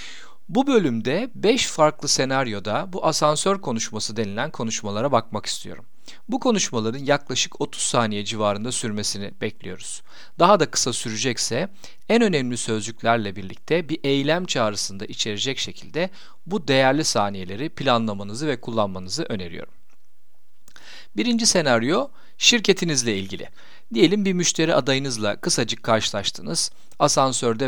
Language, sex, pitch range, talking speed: Turkish, male, 110-160 Hz, 110 wpm